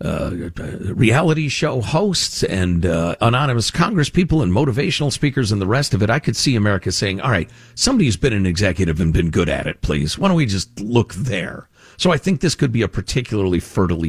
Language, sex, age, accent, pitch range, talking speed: English, male, 50-69, American, 95-145 Hz, 205 wpm